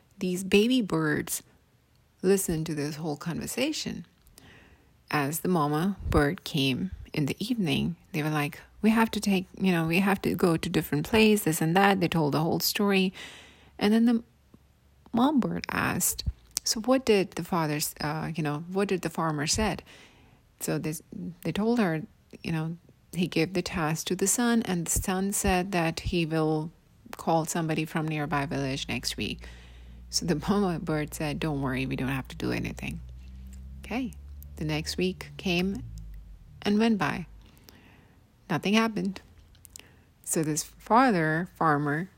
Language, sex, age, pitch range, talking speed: English, female, 30-49, 145-195 Hz, 160 wpm